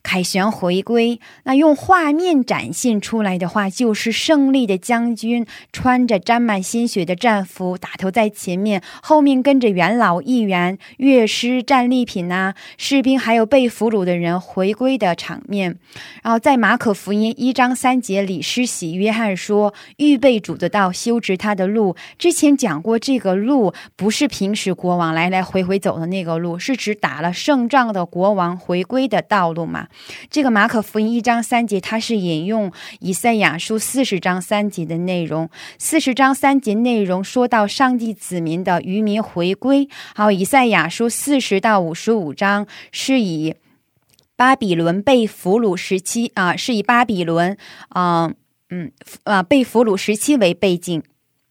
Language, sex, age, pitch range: Korean, female, 20-39, 185-245 Hz